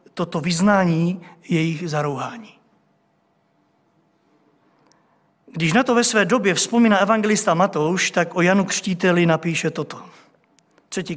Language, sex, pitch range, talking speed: Czech, male, 190-265 Hz, 105 wpm